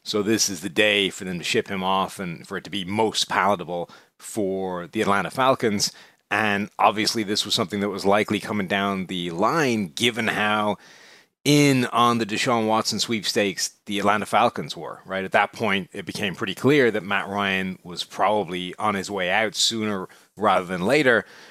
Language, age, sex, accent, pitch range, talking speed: English, 30-49, male, American, 100-125 Hz, 185 wpm